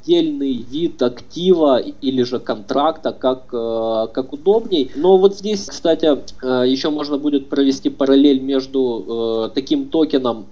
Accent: native